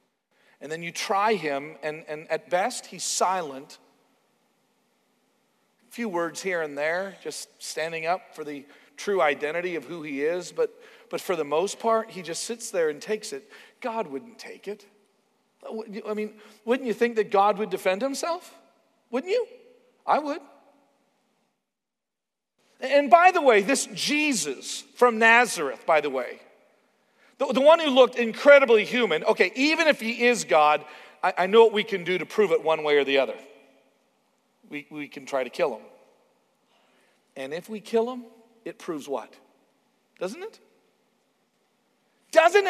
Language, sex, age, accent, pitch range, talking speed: English, male, 40-59, American, 175-260 Hz, 165 wpm